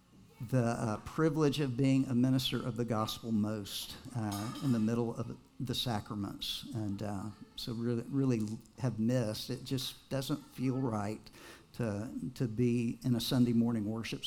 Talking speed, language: 160 wpm, English